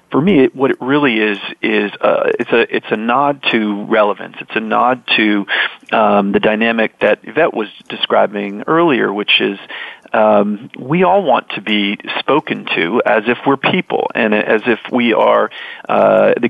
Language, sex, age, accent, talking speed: English, male, 40-59, American, 175 wpm